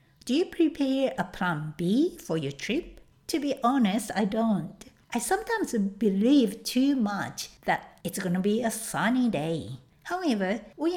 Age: 60-79